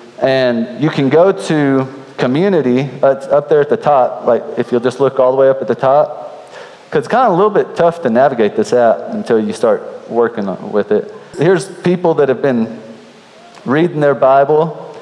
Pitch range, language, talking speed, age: 130-160 Hz, English, 205 wpm, 30-49